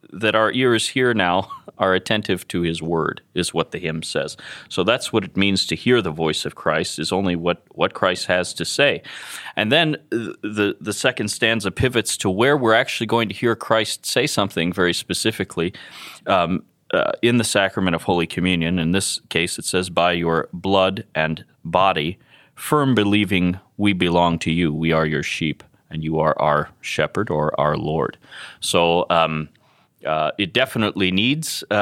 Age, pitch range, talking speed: 30-49, 85-110 Hz, 180 wpm